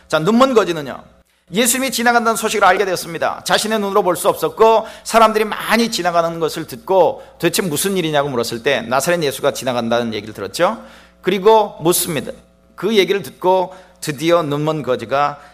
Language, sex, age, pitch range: Korean, male, 40-59, 130-200 Hz